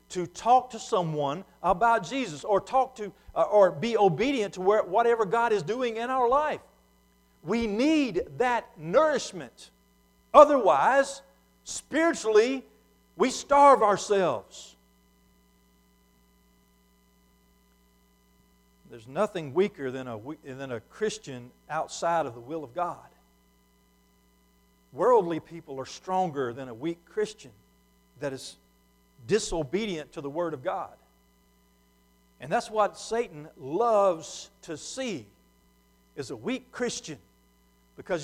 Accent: American